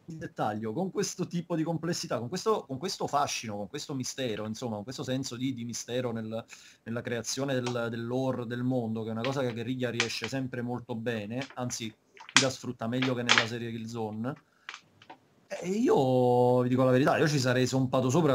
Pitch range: 120-140 Hz